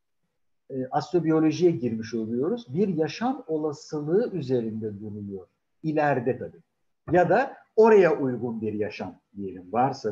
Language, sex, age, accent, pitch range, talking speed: Turkish, male, 50-69, native, 130-185 Hz, 115 wpm